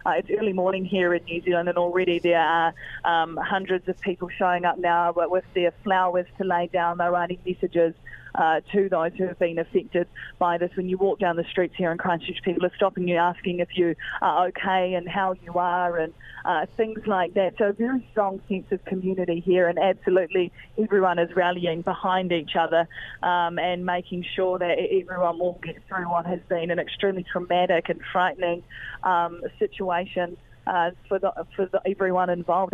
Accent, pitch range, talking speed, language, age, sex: Australian, 175-190 Hz, 190 wpm, English, 20-39, female